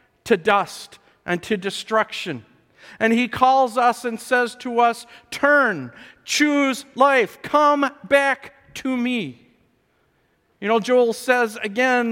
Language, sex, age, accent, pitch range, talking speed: English, male, 50-69, American, 195-245 Hz, 125 wpm